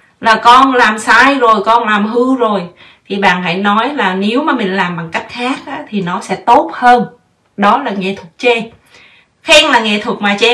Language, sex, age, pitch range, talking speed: Vietnamese, female, 20-39, 190-240 Hz, 210 wpm